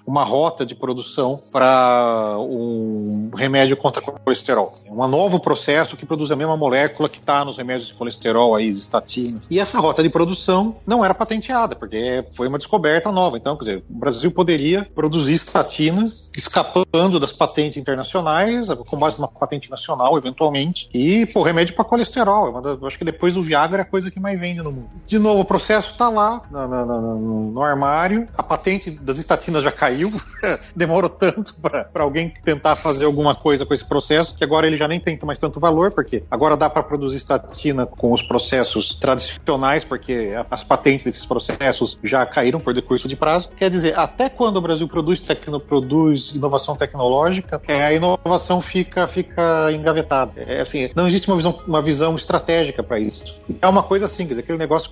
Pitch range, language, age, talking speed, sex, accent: 135-180 Hz, Portuguese, 40-59, 185 wpm, male, Brazilian